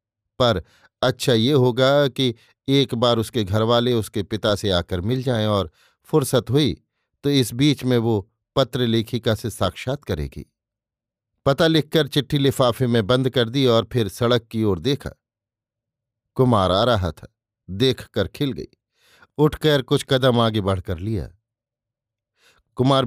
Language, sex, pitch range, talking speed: Hindi, male, 110-140 Hz, 150 wpm